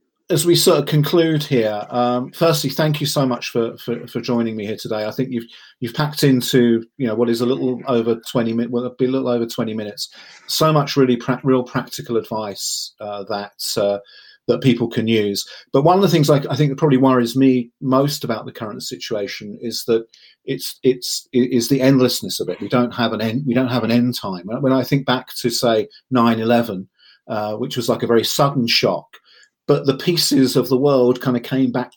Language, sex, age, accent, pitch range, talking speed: English, male, 40-59, British, 115-140 Hz, 220 wpm